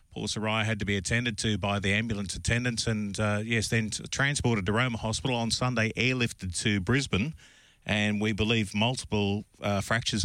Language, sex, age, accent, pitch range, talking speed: English, male, 40-59, Australian, 105-125 Hz, 170 wpm